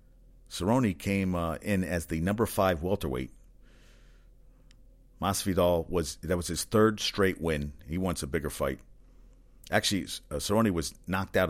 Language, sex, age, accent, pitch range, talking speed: English, male, 50-69, American, 80-115 Hz, 145 wpm